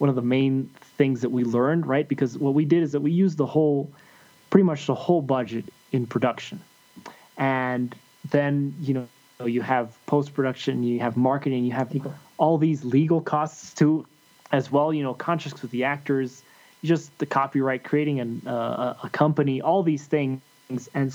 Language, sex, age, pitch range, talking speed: English, male, 20-39, 130-155 Hz, 180 wpm